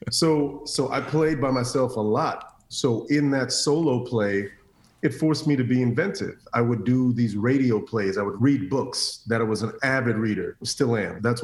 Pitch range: 105-125 Hz